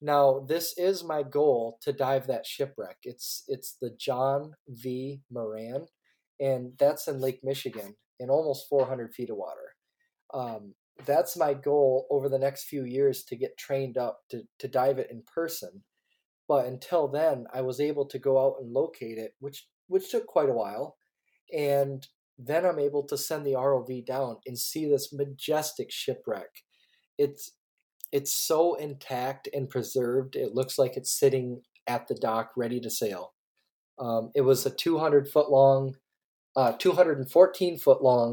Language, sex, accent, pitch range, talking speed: English, male, American, 130-155 Hz, 160 wpm